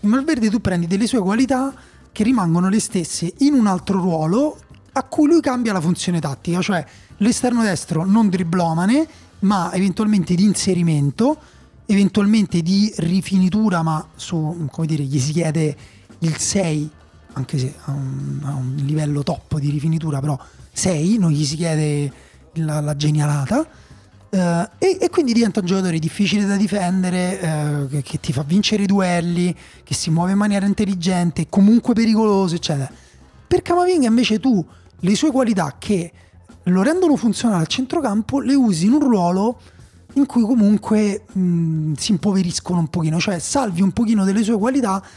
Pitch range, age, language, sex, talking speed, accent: 160-220 Hz, 30-49, Italian, male, 160 wpm, native